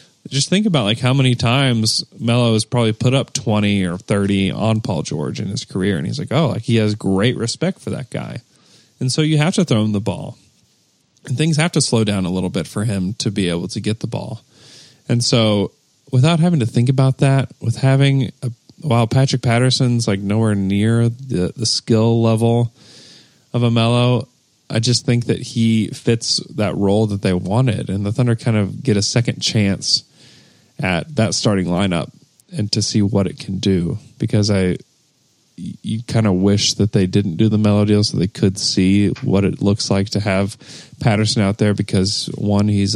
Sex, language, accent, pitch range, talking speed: male, English, American, 100-125 Hz, 200 wpm